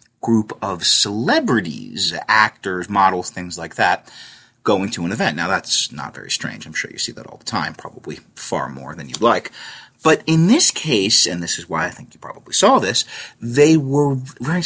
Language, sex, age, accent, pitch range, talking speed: English, male, 30-49, American, 90-150 Hz, 195 wpm